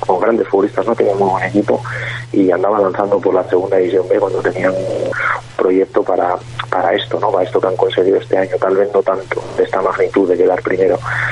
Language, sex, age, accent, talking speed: Spanish, male, 30-49, Spanish, 210 wpm